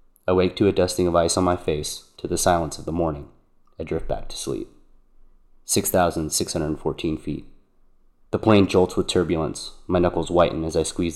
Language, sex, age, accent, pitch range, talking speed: English, male, 30-49, American, 80-90 Hz, 185 wpm